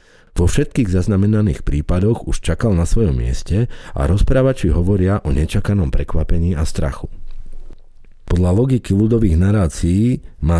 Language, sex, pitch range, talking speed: Slovak, male, 85-100 Hz, 125 wpm